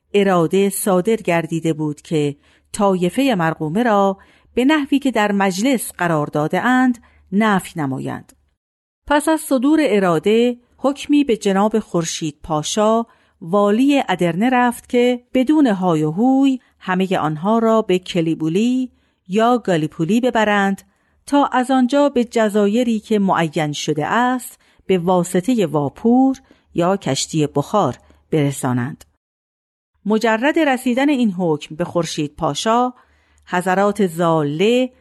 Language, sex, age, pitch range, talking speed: Persian, female, 50-69, 170-245 Hz, 115 wpm